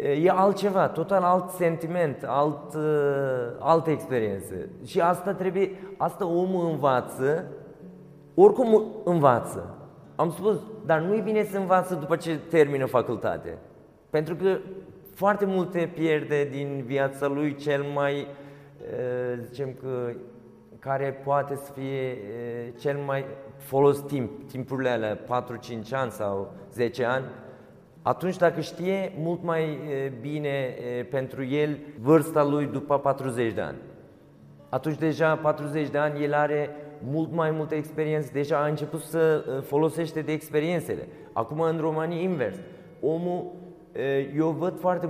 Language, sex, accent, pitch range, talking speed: Romanian, male, Turkish, 140-170 Hz, 130 wpm